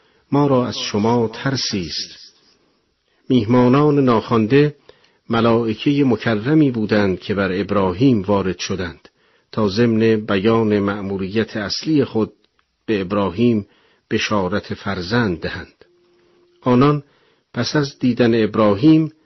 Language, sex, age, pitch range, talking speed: Persian, male, 50-69, 105-135 Hz, 95 wpm